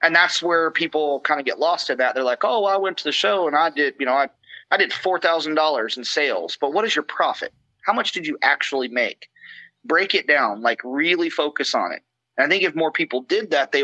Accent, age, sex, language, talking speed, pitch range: American, 30-49, male, English, 260 wpm, 135-165 Hz